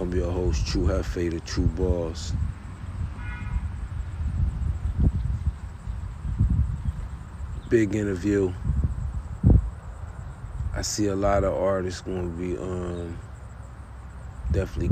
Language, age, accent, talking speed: English, 40-59, American, 85 wpm